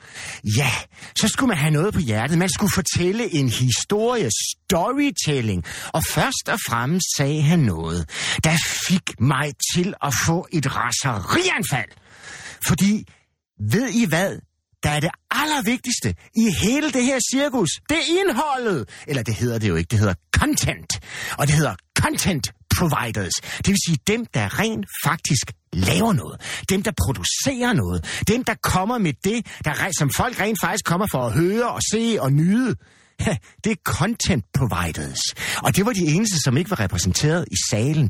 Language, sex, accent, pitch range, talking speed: Danish, male, native, 130-210 Hz, 165 wpm